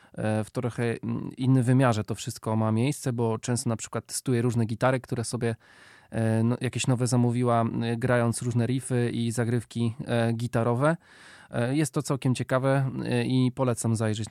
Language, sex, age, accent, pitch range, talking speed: Polish, male, 20-39, native, 115-135 Hz, 140 wpm